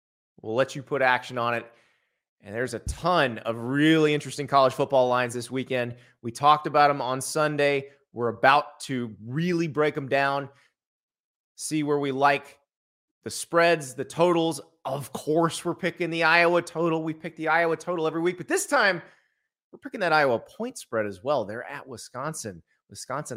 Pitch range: 125-165 Hz